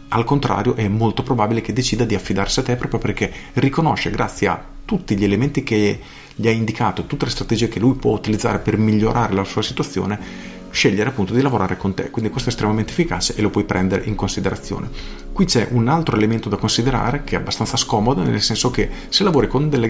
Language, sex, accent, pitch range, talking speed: Italian, male, native, 100-120 Hz, 210 wpm